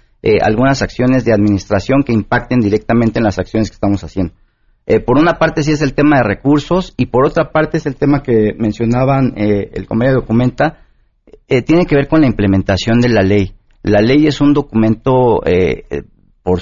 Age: 40-59